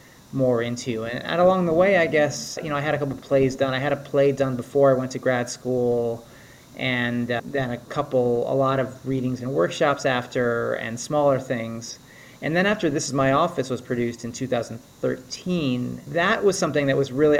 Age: 30-49